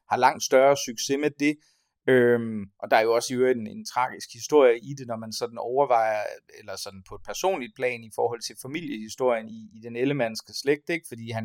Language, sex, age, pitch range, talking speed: Danish, male, 30-49, 115-140 Hz, 220 wpm